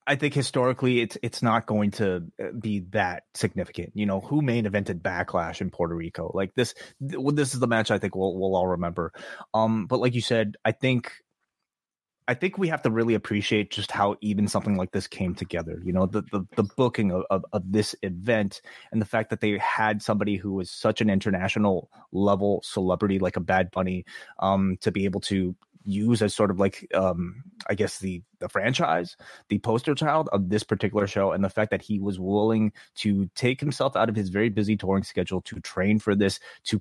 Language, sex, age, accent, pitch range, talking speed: English, male, 30-49, American, 95-115 Hz, 210 wpm